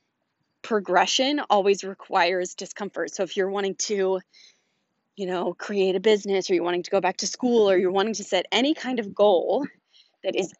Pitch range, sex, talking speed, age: 190-225 Hz, female, 185 wpm, 20-39